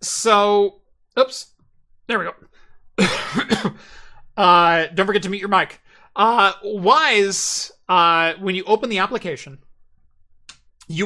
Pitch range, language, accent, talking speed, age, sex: 155-195 Hz, English, American, 115 wpm, 30-49, male